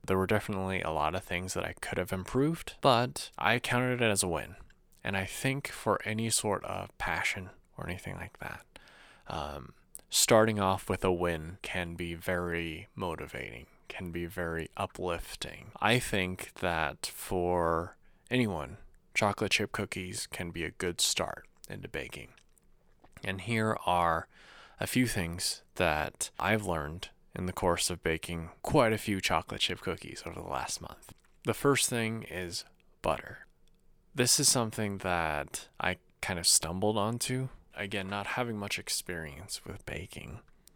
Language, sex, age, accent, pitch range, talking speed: English, male, 20-39, American, 85-110 Hz, 155 wpm